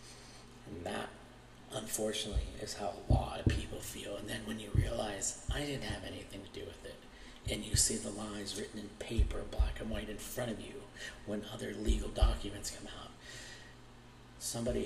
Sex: male